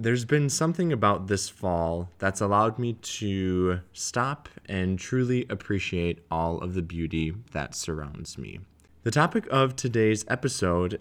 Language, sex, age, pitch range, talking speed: English, male, 20-39, 90-115 Hz, 140 wpm